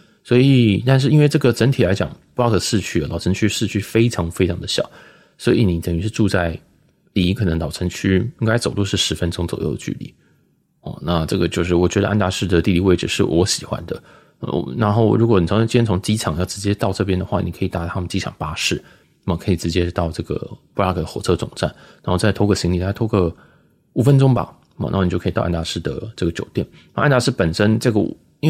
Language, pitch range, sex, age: Chinese, 85-115 Hz, male, 20-39